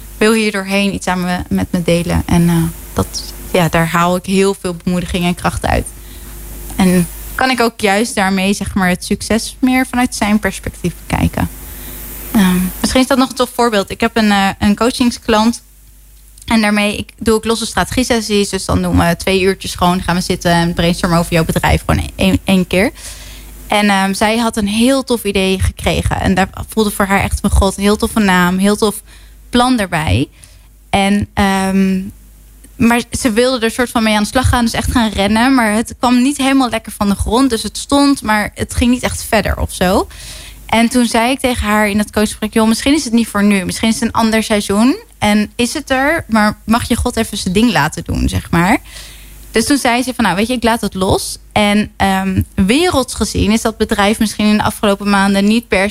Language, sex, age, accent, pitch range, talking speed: Dutch, female, 20-39, Dutch, 190-230 Hz, 215 wpm